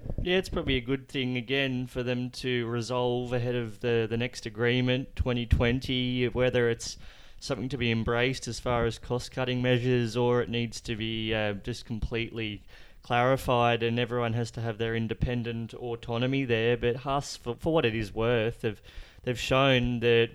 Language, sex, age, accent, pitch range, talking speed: English, male, 20-39, Australian, 110-125 Hz, 175 wpm